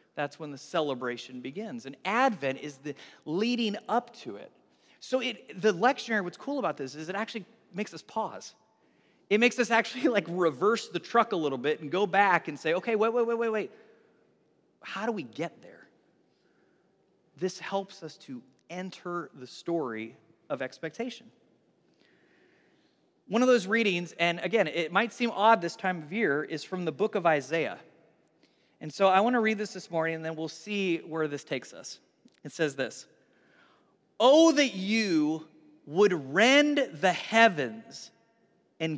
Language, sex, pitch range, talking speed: English, male, 170-235 Hz, 170 wpm